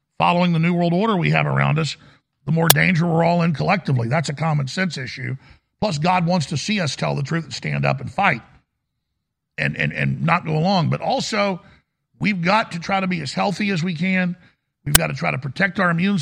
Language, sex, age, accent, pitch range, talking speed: English, male, 50-69, American, 150-195 Hz, 230 wpm